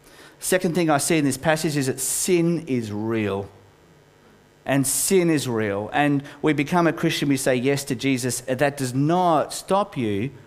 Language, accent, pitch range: English, Australian, 115-155 Hz